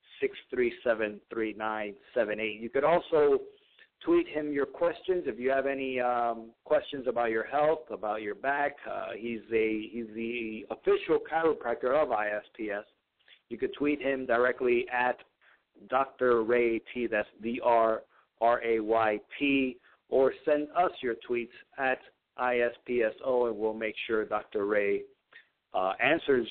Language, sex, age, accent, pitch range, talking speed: English, male, 50-69, American, 115-145 Hz, 125 wpm